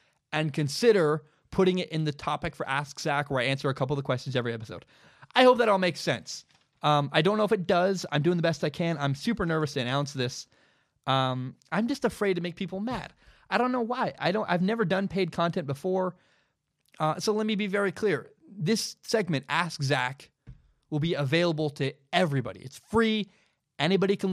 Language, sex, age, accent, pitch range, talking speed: English, male, 20-39, American, 140-180 Hz, 210 wpm